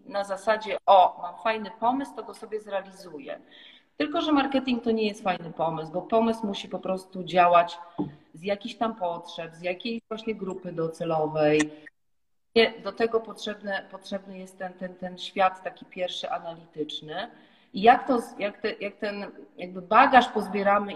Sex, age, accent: female, 40-59, native